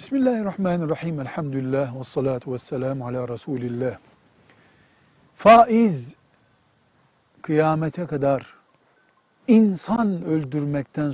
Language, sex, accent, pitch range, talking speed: Turkish, male, native, 130-185 Hz, 65 wpm